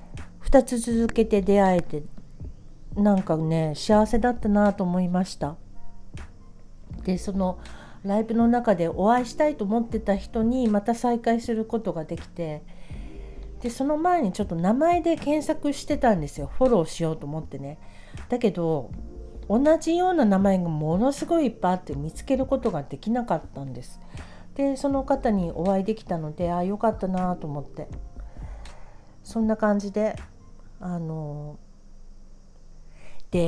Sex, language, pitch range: female, Japanese, 160-240 Hz